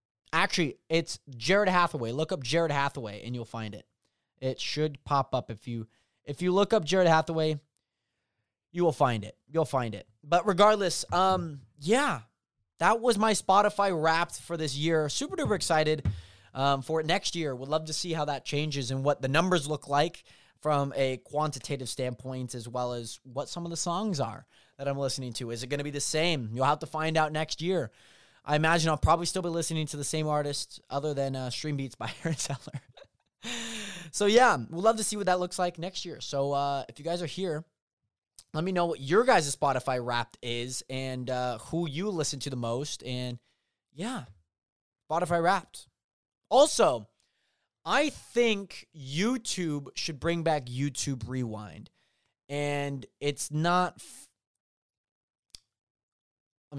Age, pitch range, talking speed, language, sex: 20-39, 130-170 Hz, 180 wpm, English, male